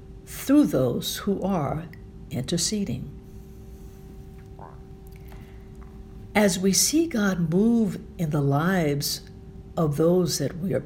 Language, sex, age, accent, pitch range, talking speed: English, female, 60-79, American, 150-215 Hz, 100 wpm